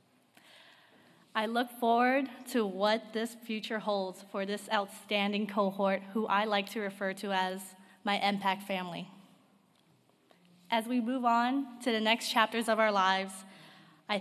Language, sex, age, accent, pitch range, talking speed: English, female, 20-39, American, 195-230 Hz, 145 wpm